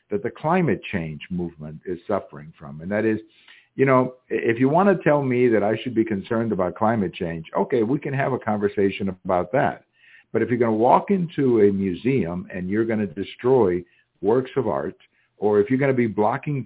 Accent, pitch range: American, 100-130 Hz